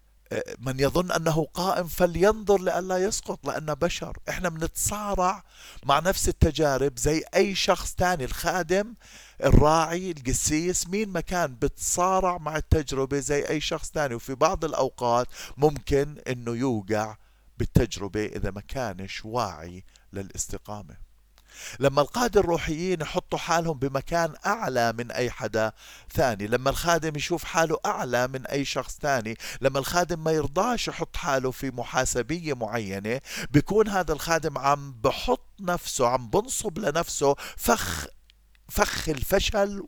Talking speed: 125 wpm